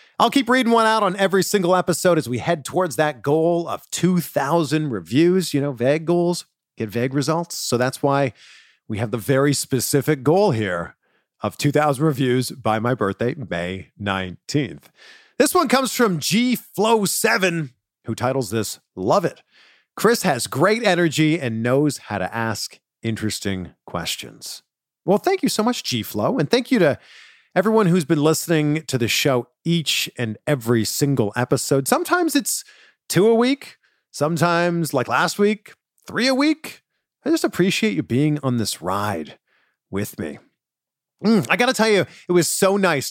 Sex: male